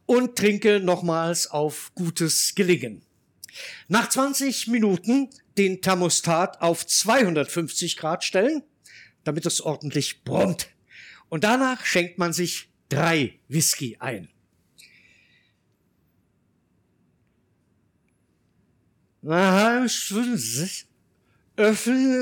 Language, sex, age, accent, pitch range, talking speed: German, male, 60-79, German, 185-275 Hz, 75 wpm